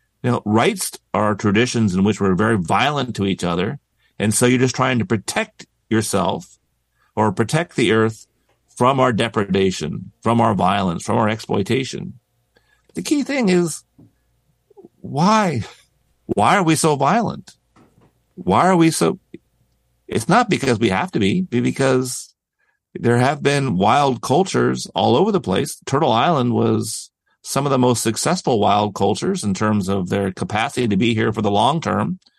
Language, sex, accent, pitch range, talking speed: English, male, American, 105-130 Hz, 160 wpm